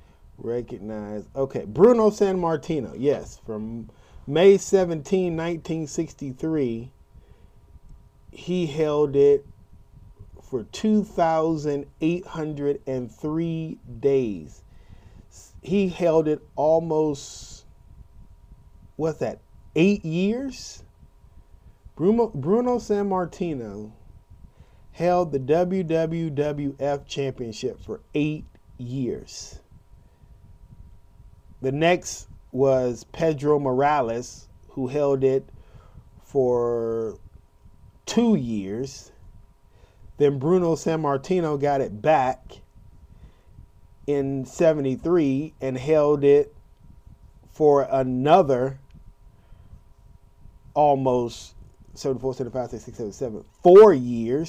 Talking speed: 70 wpm